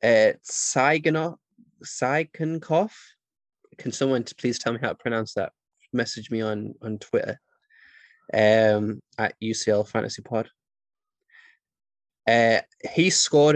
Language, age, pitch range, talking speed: English, 10-29, 110-135 Hz, 105 wpm